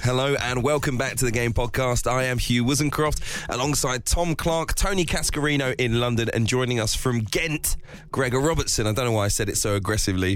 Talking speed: 205 wpm